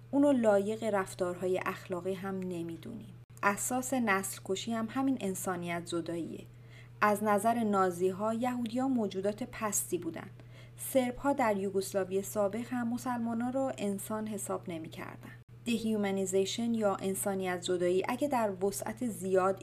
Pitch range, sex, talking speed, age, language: 175-220 Hz, female, 130 wpm, 40-59, Persian